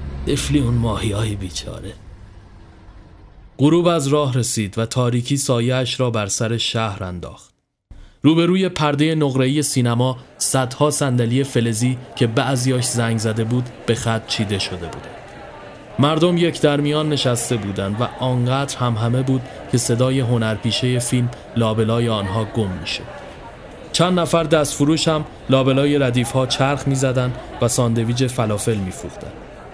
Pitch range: 115-140 Hz